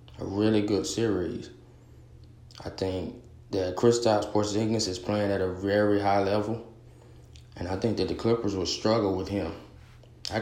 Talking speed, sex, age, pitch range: 155 wpm, male, 20-39, 95-110 Hz